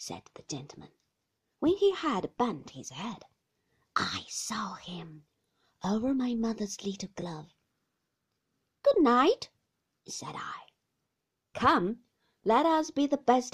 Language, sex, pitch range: Chinese, female, 175-265 Hz